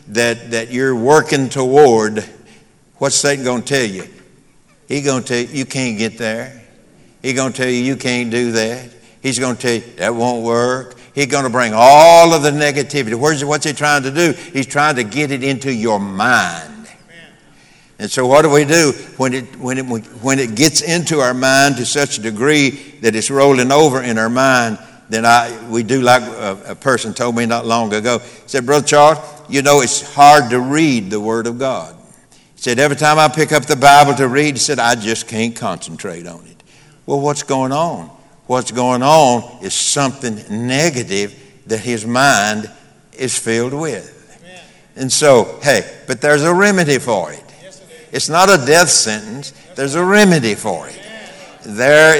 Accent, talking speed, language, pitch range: American, 185 wpm, English, 120-145 Hz